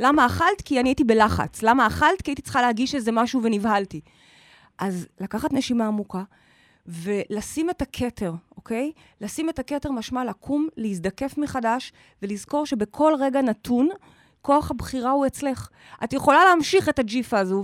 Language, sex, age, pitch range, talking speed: Hebrew, female, 30-49, 195-260 Hz, 150 wpm